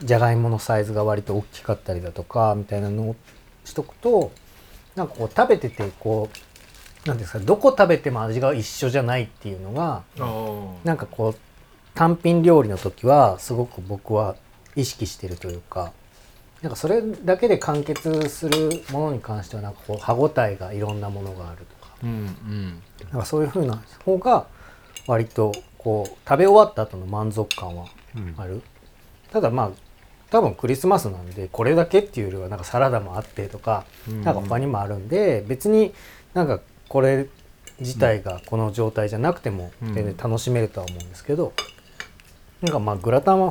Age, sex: 40-59, male